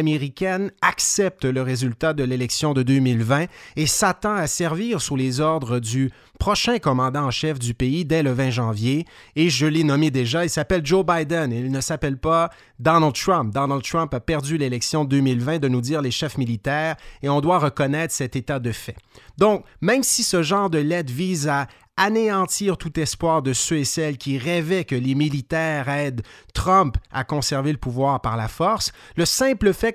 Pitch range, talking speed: 135-215 Hz, 190 wpm